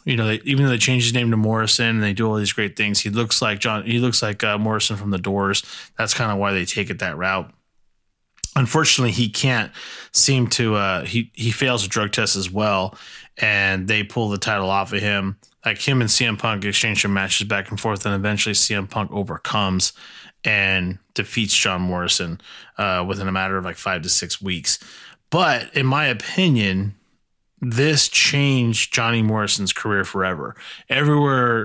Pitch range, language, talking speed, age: 100-120 Hz, English, 195 wpm, 20-39